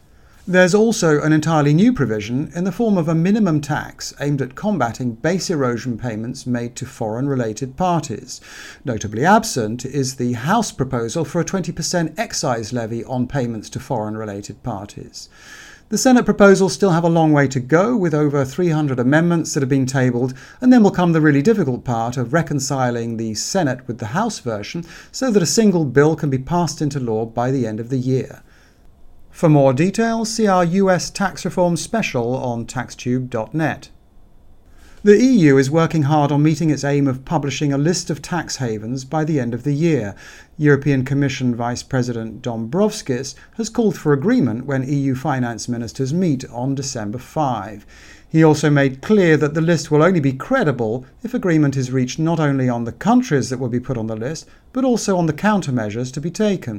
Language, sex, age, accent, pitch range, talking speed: English, male, 50-69, British, 125-170 Hz, 185 wpm